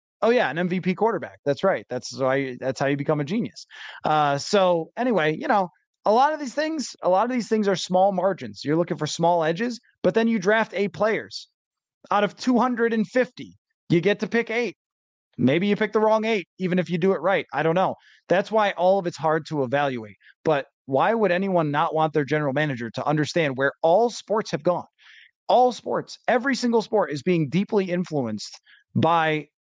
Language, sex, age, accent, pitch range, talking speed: English, male, 20-39, American, 155-230 Hz, 205 wpm